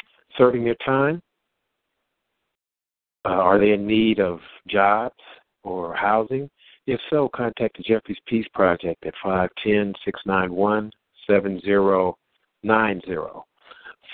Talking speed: 90 wpm